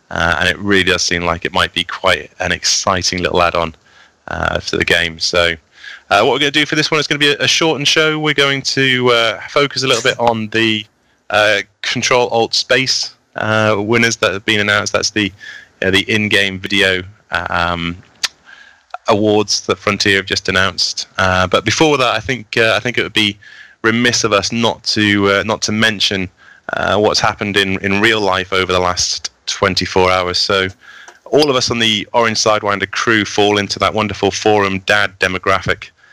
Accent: British